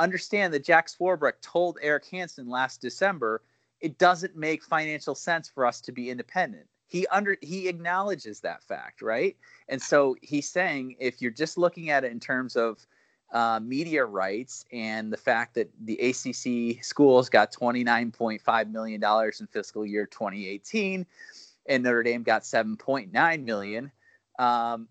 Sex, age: male, 30-49